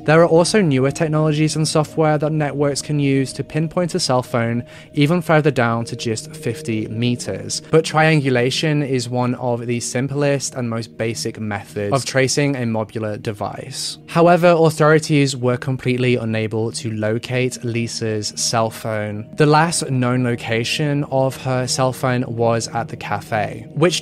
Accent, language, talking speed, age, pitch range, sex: British, English, 155 wpm, 20-39, 115-150 Hz, male